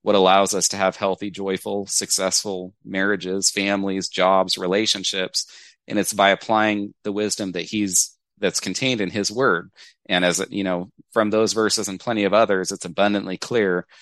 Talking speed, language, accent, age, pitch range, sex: 165 wpm, English, American, 30-49, 95-110 Hz, male